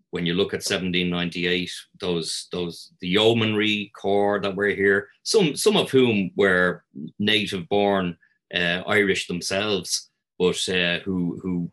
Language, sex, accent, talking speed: English, male, Irish, 135 wpm